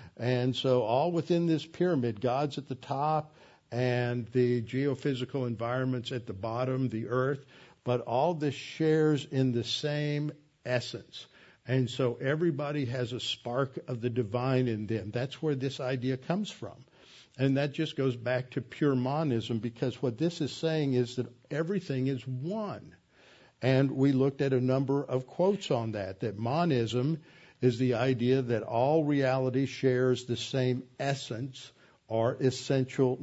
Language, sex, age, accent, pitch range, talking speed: English, male, 60-79, American, 125-150 Hz, 155 wpm